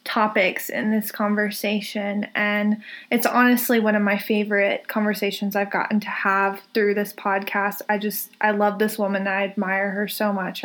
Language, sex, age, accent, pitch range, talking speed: English, female, 20-39, American, 200-230 Hz, 170 wpm